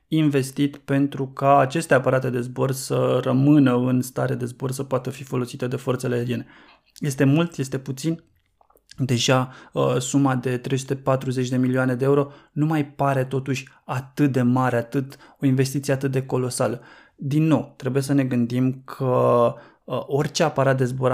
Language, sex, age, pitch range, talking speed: Romanian, male, 20-39, 125-140 Hz, 160 wpm